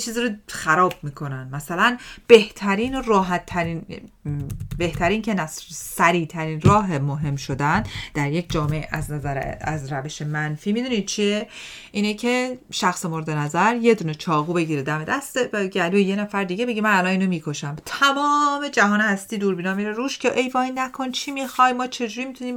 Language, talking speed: Persian, 165 wpm